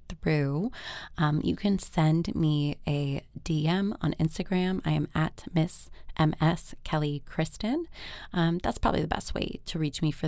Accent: American